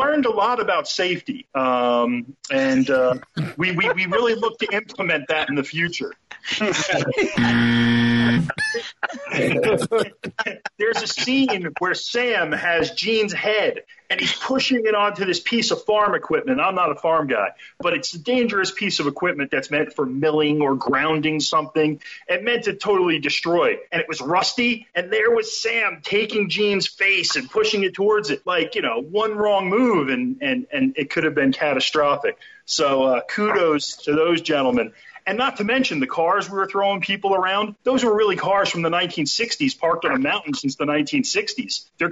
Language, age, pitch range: English, 40-59, 155-235 Hz